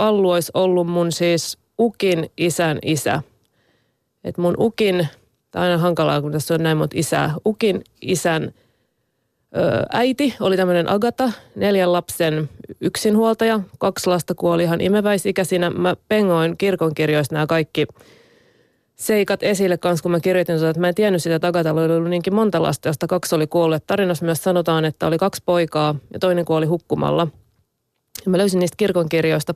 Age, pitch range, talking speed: 30-49, 165-195 Hz, 155 wpm